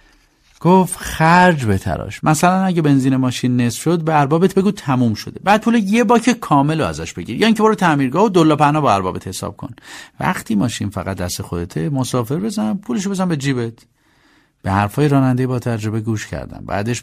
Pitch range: 115-185 Hz